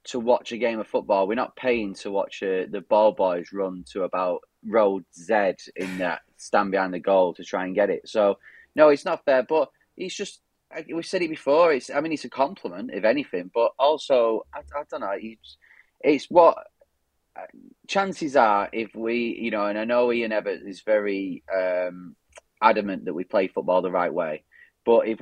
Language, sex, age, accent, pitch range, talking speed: English, male, 30-49, British, 95-120 Hz, 205 wpm